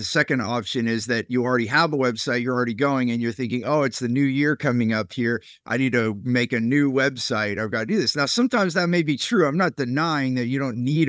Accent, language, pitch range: American, English, 125-160 Hz